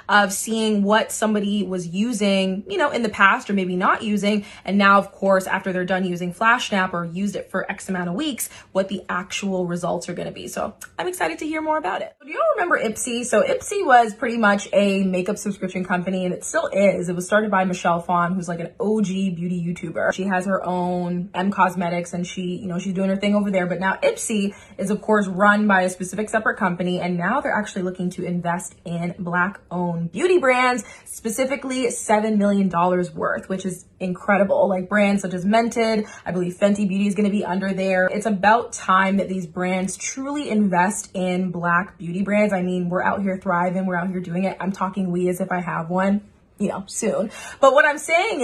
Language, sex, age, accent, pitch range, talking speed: English, female, 20-39, American, 180-215 Hz, 220 wpm